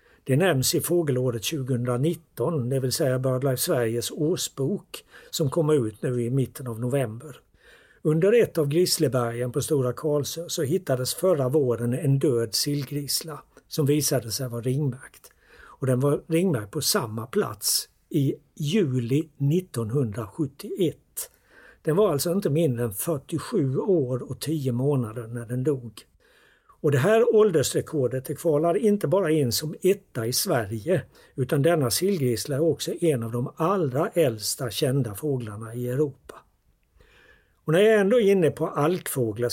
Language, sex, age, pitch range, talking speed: Swedish, male, 60-79, 125-160 Hz, 145 wpm